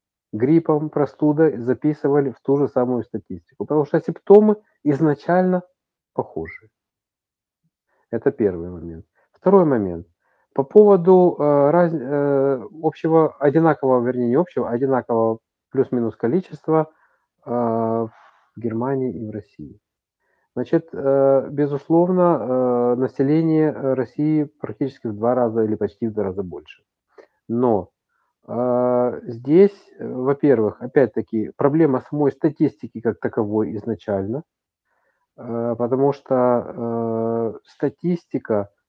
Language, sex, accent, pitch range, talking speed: Russian, male, native, 115-155 Hz, 95 wpm